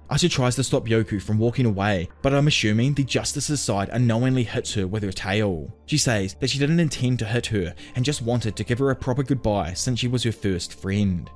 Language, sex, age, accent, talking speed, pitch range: English, male, 20-39, Australian, 230 wpm, 100-130 Hz